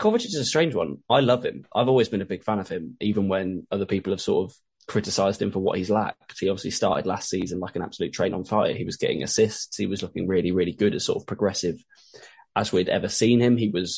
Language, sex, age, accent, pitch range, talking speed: English, male, 10-29, British, 100-130 Hz, 260 wpm